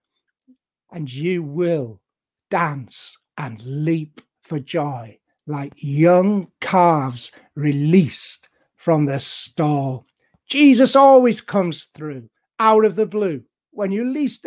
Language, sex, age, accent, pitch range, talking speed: English, male, 60-79, British, 135-190 Hz, 110 wpm